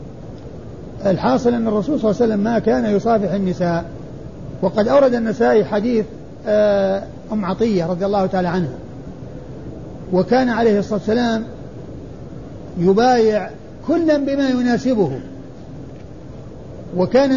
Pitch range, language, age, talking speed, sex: 195-255 Hz, Arabic, 50-69, 105 wpm, male